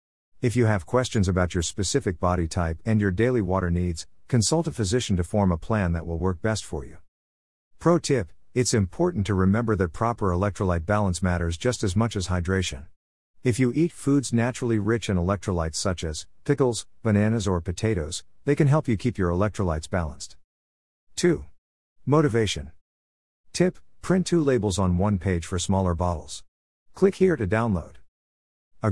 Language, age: English, 50-69